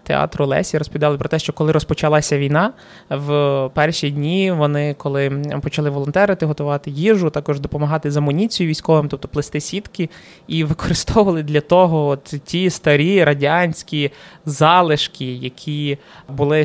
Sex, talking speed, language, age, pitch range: male, 130 wpm, Ukrainian, 20-39, 145-165 Hz